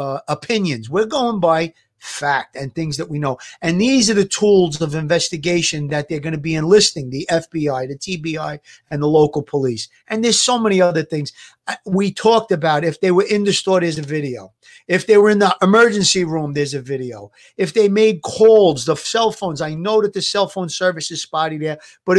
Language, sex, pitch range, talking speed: English, male, 155-200 Hz, 210 wpm